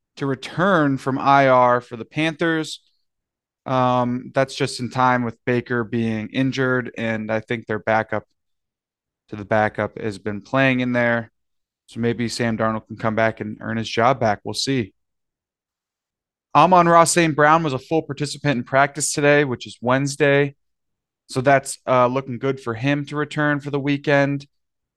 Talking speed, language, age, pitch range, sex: 165 wpm, English, 20-39, 115-140 Hz, male